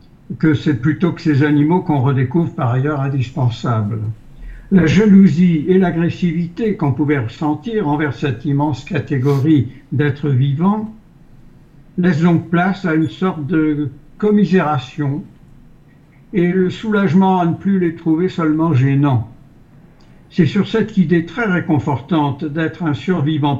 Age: 60-79